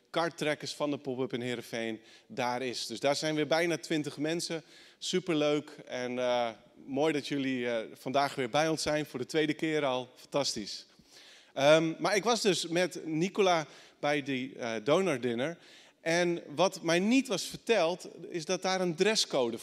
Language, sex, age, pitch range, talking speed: Dutch, male, 40-59, 130-165 Hz, 170 wpm